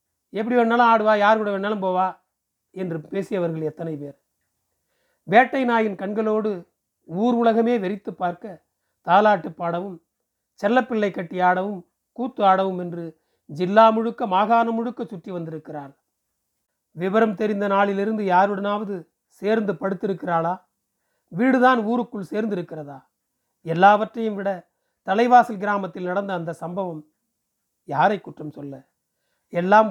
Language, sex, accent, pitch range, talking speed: Tamil, male, native, 175-220 Hz, 100 wpm